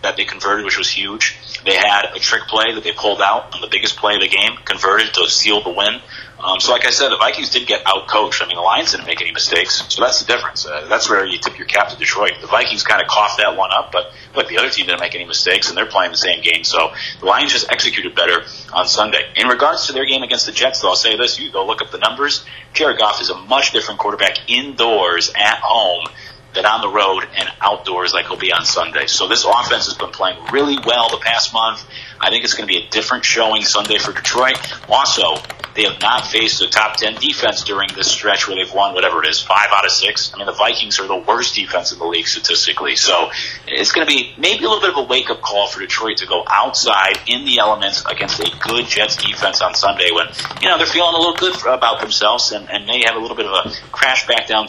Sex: male